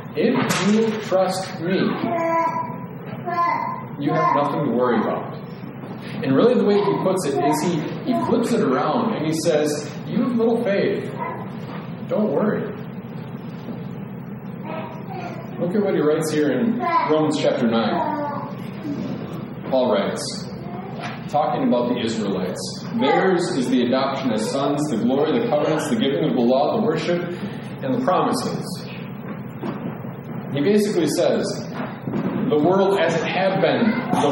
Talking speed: 135 wpm